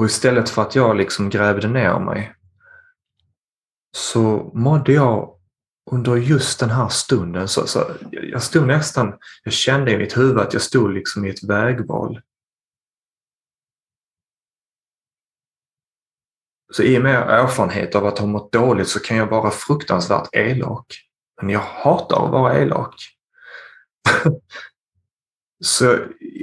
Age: 30-49